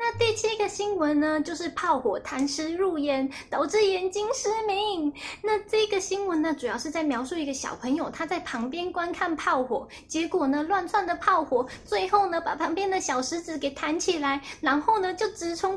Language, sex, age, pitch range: Chinese, female, 20-39, 285-400 Hz